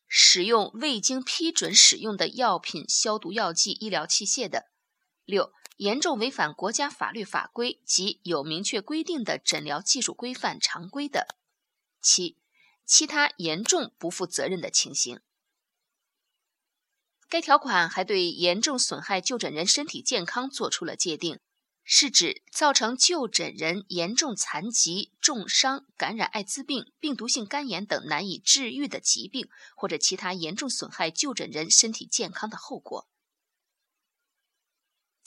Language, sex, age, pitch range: Chinese, female, 20-39, 185-290 Hz